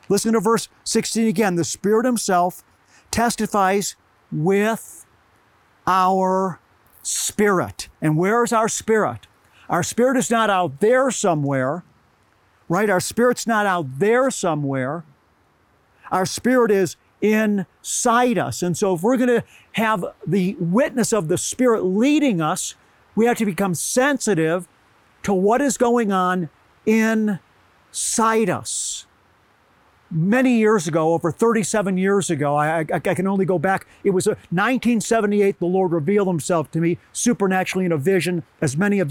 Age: 50-69